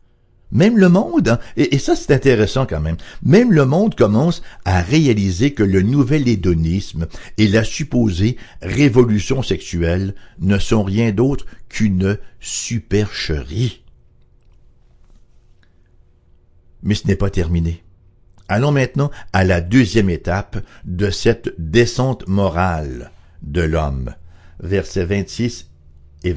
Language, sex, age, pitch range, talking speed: English, male, 60-79, 85-120 Hz, 120 wpm